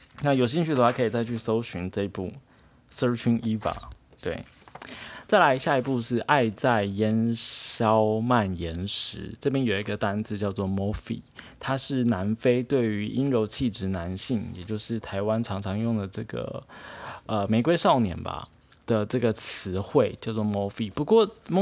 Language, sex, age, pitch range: Chinese, male, 20-39, 100-125 Hz